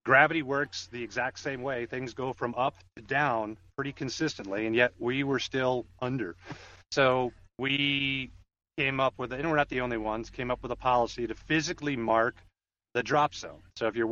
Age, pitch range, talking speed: 30-49, 110-135 Hz, 190 wpm